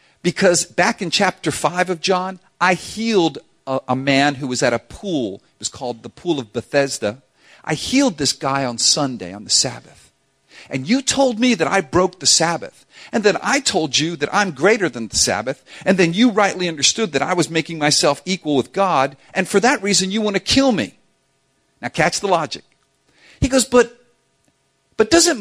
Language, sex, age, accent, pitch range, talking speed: English, male, 50-69, American, 140-205 Hz, 200 wpm